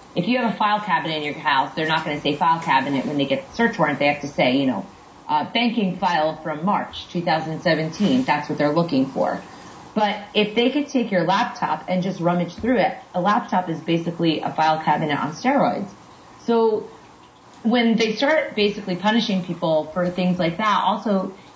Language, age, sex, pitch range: English, 30-49, female, 165-220 Hz